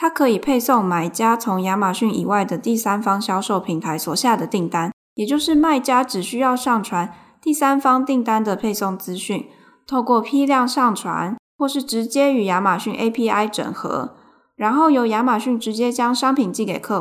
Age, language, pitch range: 10-29, Chinese, 195-245 Hz